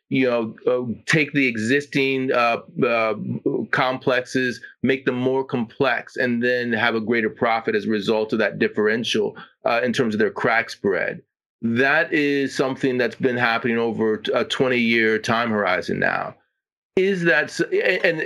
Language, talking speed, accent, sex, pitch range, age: English, 155 wpm, American, male, 115-135 Hz, 30-49